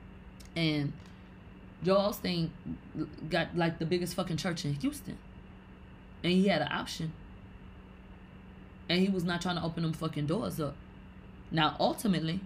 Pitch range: 145-185 Hz